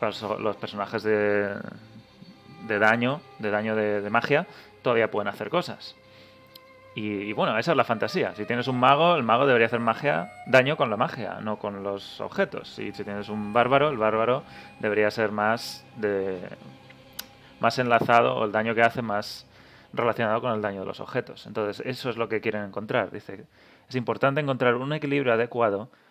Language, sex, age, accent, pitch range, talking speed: Spanish, male, 30-49, Spanish, 105-130 Hz, 180 wpm